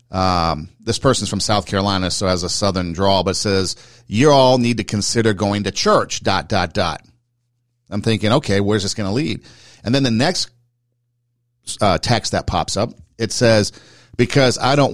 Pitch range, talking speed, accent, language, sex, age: 100-120 Hz, 185 wpm, American, English, male, 50-69